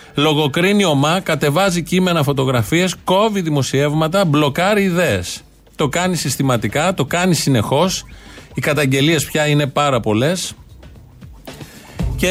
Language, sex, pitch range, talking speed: Greek, male, 135-175 Hz, 105 wpm